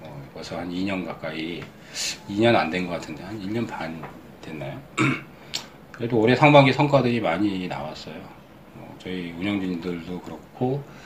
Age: 40-59